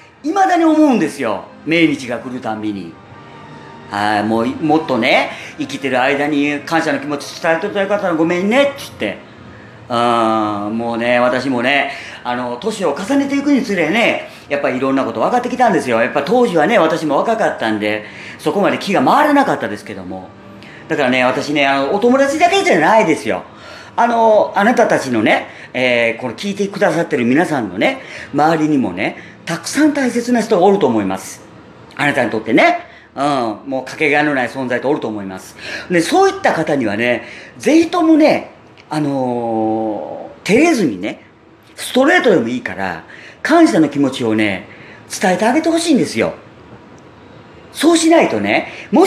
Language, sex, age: Japanese, female, 40-59